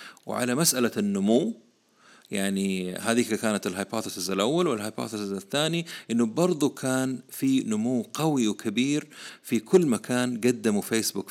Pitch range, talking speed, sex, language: 105-140 Hz, 115 wpm, male, Arabic